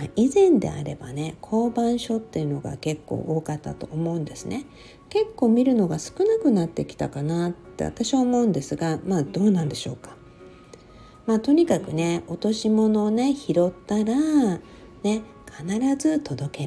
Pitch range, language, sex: 155-235 Hz, Japanese, female